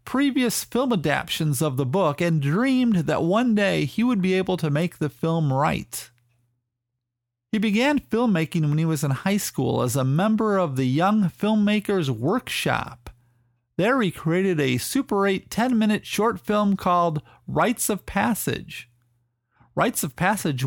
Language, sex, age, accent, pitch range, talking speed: English, male, 40-59, American, 145-205 Hz, 155 wpm